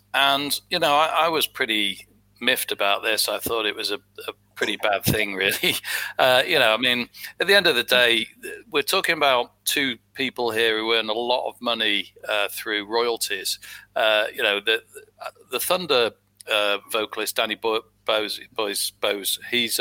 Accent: British